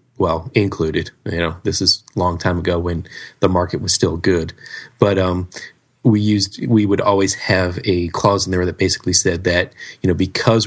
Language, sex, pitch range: English, male, 90-110 Hz